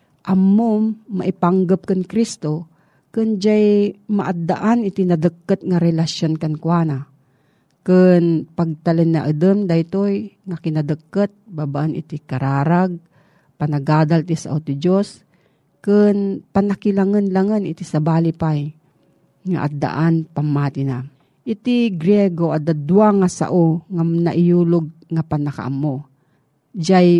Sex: female